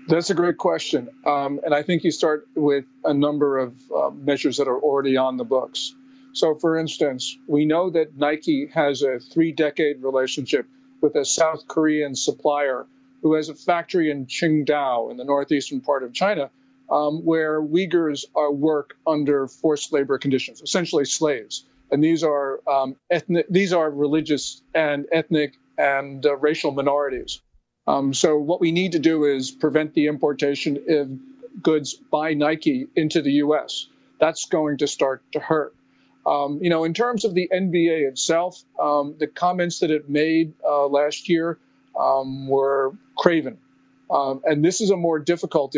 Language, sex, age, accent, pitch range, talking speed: English, male, 50-69, American, 140-165 Hz, 160 wpm